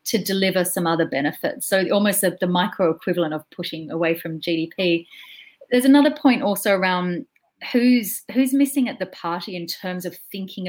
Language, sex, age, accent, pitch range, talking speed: English, female, 30-49, Australian, 165-210 Hz, 170 wpm